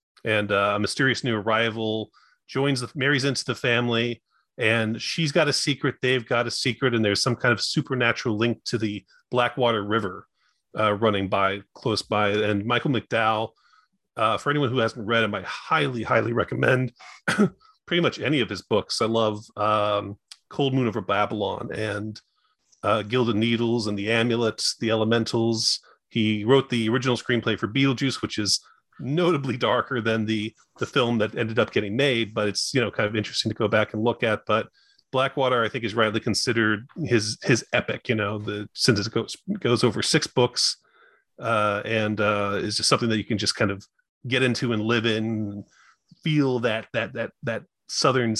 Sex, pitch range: male, 105-125 Hz